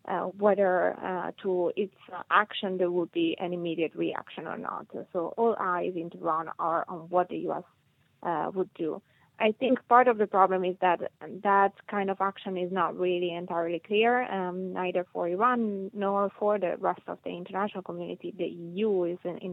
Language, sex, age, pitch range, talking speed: English, female, 20-39, 175-195 Hz, 185 wpm